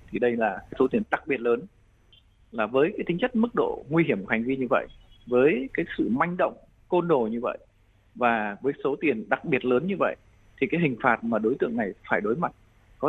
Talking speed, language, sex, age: 240 wpm, Vietnamese, male, 20-39